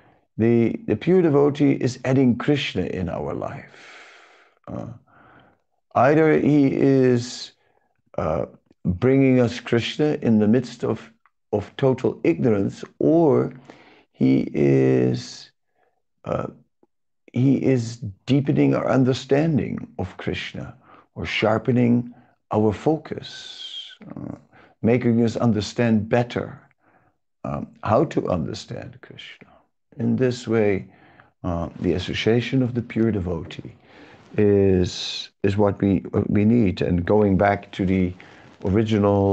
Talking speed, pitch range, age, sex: 110 wpm, 100-125 Hz, 50-69, male